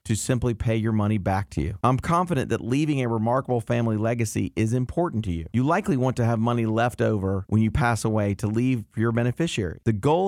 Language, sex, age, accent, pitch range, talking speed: English, male, 40-59, American, 105-135 Hz, 230 wpm